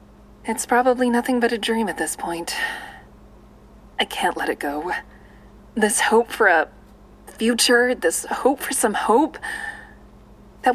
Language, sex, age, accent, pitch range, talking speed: English, female, 20-39, American, 160-255 Hz, 140 wpm